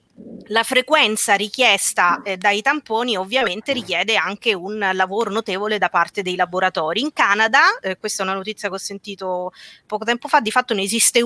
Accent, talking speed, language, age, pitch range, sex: native, 165 wpm, Italian, 30-49, 190-240 Hz, female